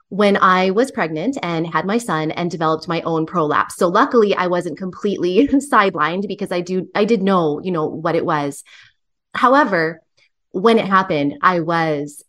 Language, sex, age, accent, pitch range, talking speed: English, female, 20-39, American, 170-205 Hz, 175 wpm